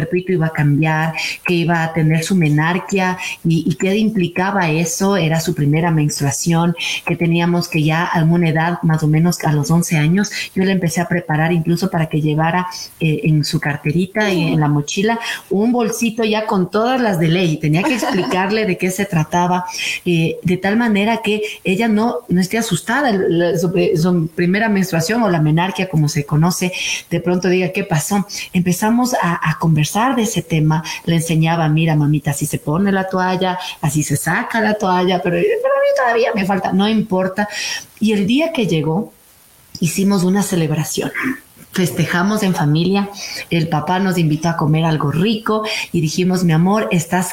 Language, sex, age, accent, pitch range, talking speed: Spanish, female, 40-59, Mexican, 165-205 Hz, 185 wpm